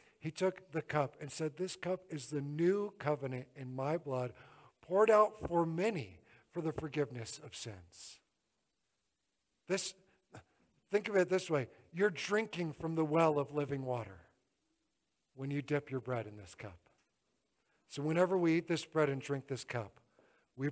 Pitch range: 130-180 Hz